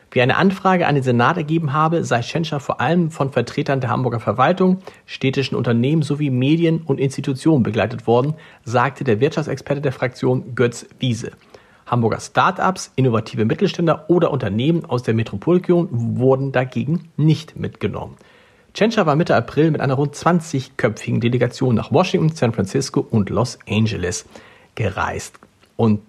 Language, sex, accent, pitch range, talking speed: German, male, German, 120-165 Hz, 145 wpm